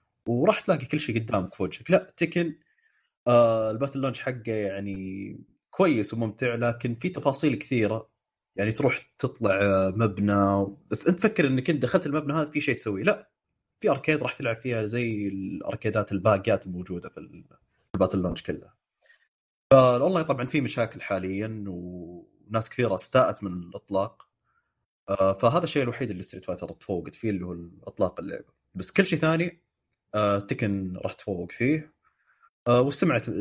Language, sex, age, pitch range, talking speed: Arabic, male, 30-49, 100-140 Hz, 150 wpm